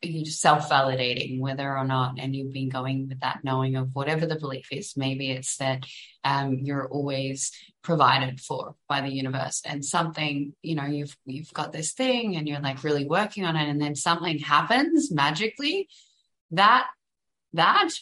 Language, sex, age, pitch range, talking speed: English, female, 20-39, 145-200 Hz, 170 wpm